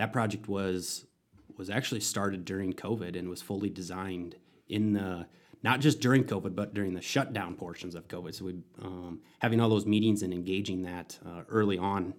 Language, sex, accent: English, male, American